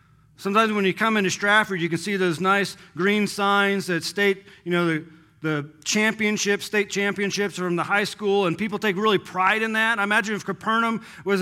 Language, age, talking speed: English, 40-59, 200 wpm